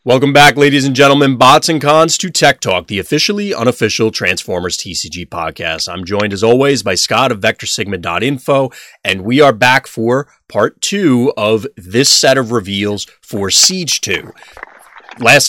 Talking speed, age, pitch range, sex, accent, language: 160 wpm, 30-49, 105-140 Hz, male, American, English